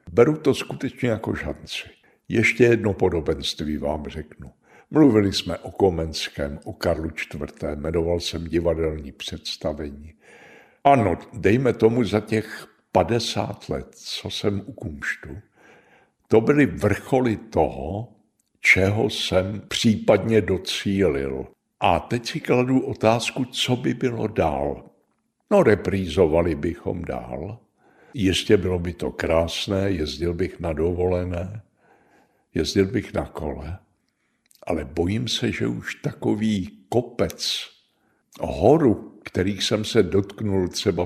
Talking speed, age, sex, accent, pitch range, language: 115 wpm, 60-79, male, native, 85-110 Hz, Czech